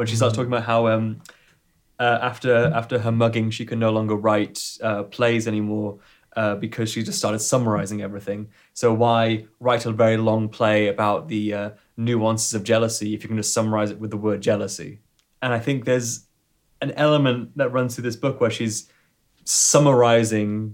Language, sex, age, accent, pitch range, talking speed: English, male, 20-39, British, 110-130 Hz, 185 wpm